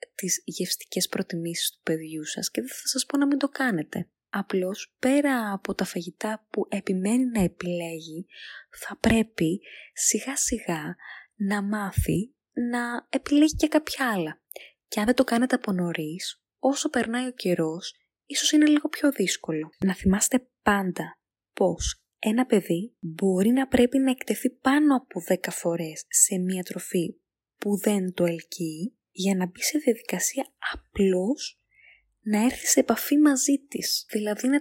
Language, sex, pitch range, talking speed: Greek, female, 185-275 Hz, 150 wpm